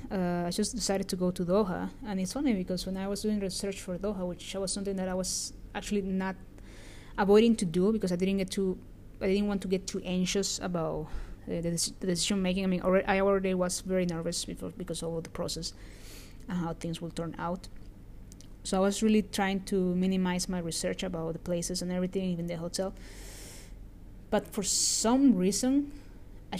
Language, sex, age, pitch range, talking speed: English, female, 20-39, 165-195 Hz, 205 wpm